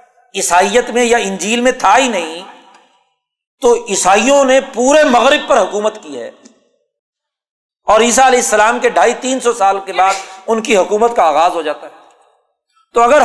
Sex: male